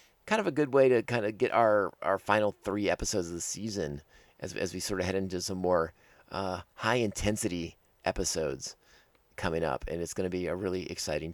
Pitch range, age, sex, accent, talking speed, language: 90-120 Hz, 30-49, male, American, 205 wpm, English